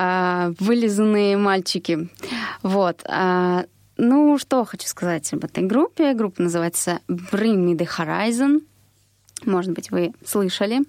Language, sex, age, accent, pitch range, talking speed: Russian, female, 20-39, native, 180-235 Hz, 110 wpm